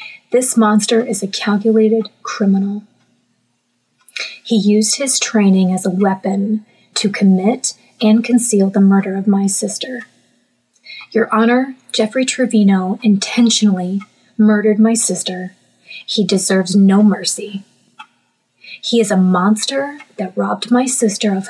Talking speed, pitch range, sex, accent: 120 wpm, 200-240 Hz, female, American